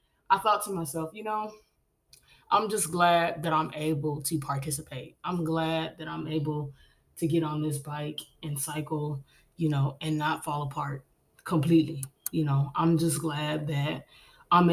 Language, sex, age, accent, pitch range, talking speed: English, female, 20-39, American, 145-170 Hz, 165 wpm